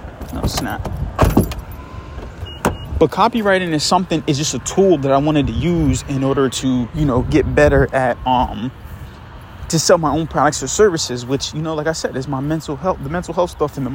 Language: English